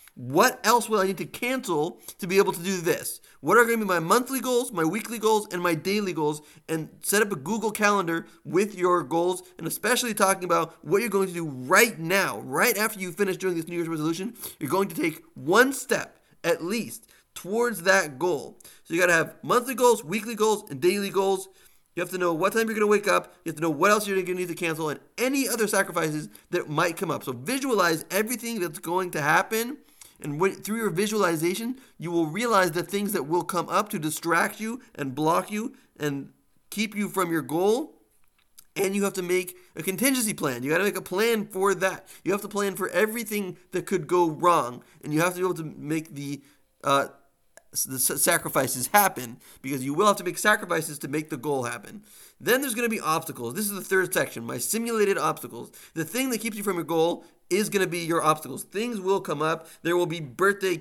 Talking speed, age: 225 wpm, 30-49